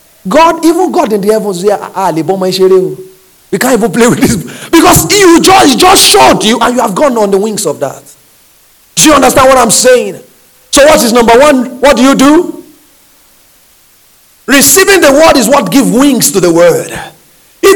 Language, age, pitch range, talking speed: English, 40-59, 210-295 Hz, 180 wpm